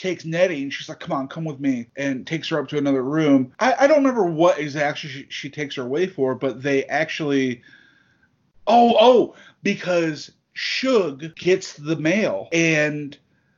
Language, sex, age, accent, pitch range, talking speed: English, male, 30-49, American, 130-155 Hz, 175 wpm